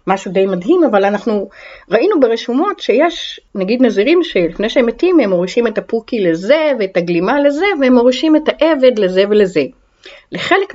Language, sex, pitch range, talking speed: Hebrew, female, 190-275 Hz, 155 wpm